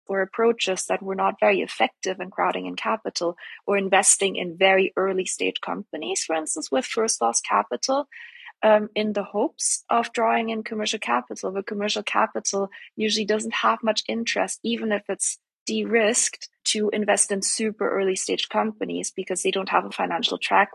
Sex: female